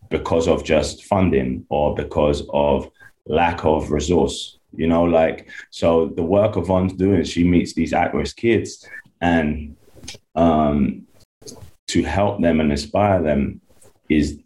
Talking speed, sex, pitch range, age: 135 wpm, male, 80-100 Hz, 20-39